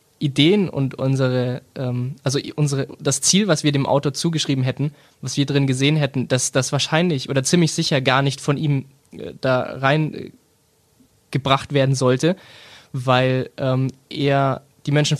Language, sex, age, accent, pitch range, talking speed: German, male, 20-39, German, 130-155 Hz, 160 wpm